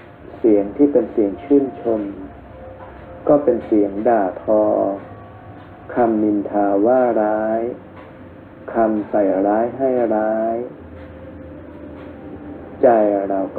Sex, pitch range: male, 100-115 Hz